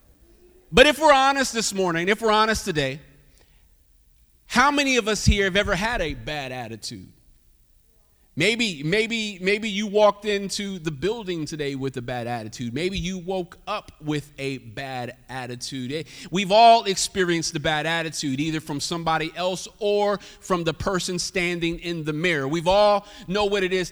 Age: 30-49